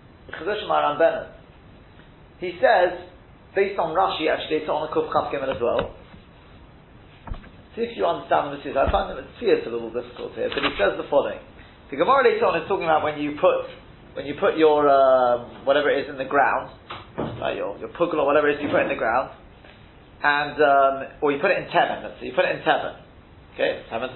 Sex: male